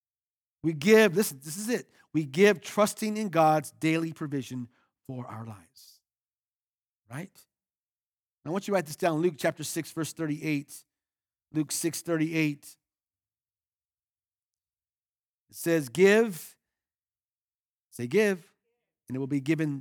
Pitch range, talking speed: 150-215 Hz, 135 wpm